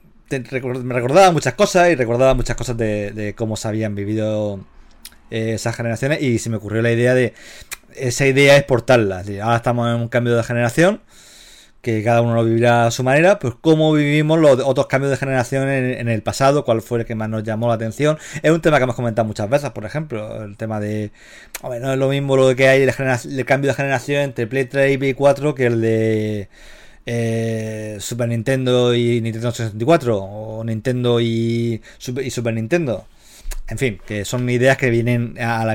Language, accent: Spanish, Spanish